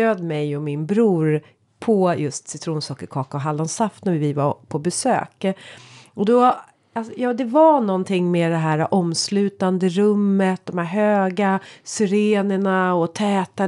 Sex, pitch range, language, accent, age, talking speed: female, 165-215 Hz, Swedish, native, 30-49, 140 wpm